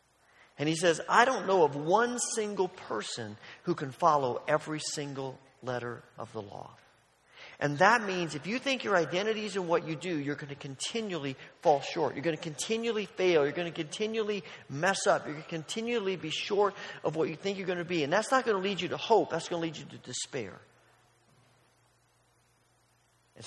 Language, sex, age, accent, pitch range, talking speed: English, male, 40-59, American, 145-195 Hz, 200 wpm